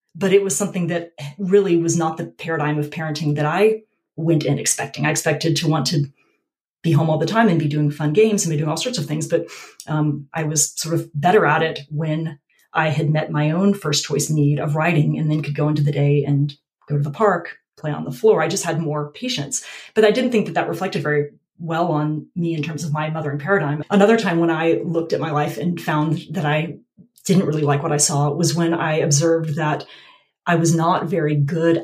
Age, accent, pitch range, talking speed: 30-49, American, 150-185 Hz, 235 wpm